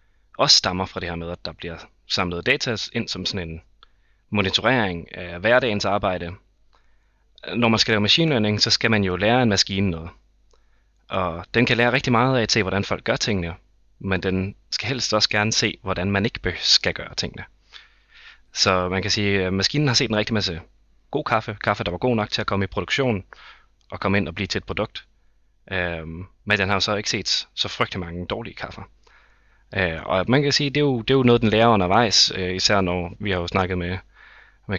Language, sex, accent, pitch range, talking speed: Danish, male, native, 95-115 Hz, 215 wpm